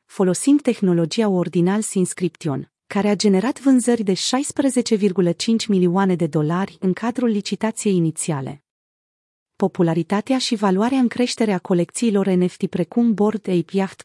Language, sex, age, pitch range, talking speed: Romanian, female, 30-49, 180-225 Hz, 125 wpm